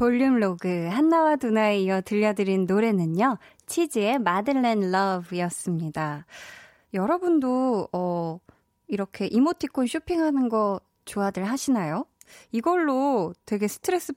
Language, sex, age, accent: Korean, female, 20-39, native